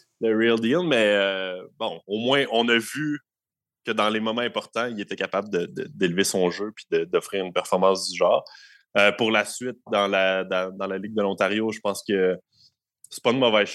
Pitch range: 95-110 Hz